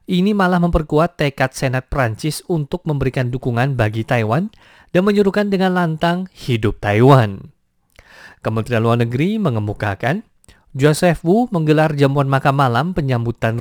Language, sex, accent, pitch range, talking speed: English, male, Indonesian, 125-175 Hz, 125 wpm